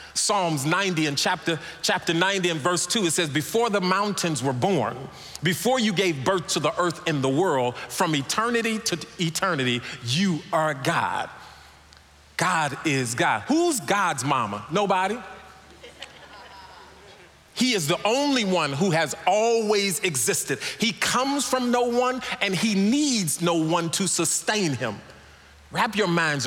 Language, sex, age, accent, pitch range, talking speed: English, male, 40-59, American, 155-210 Hz, 145 wpm